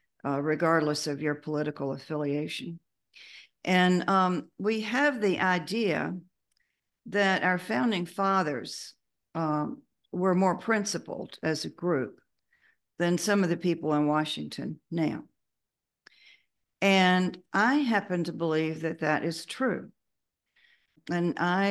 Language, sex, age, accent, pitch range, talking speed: English, female, 50-69, American, 150-180 Hz, 115 wpm